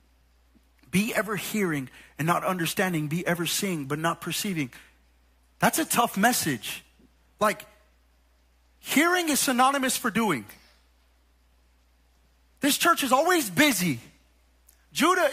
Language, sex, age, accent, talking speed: English, male, 30-49, American, 110 wpm